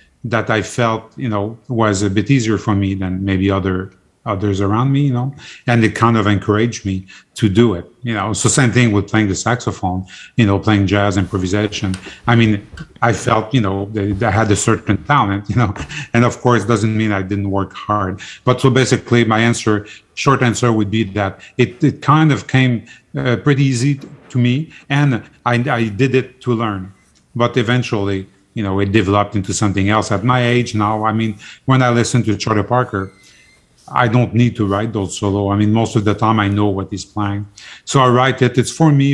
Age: 30-49